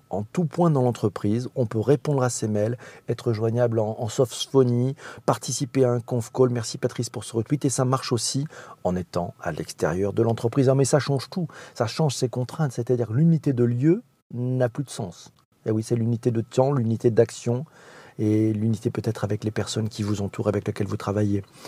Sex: male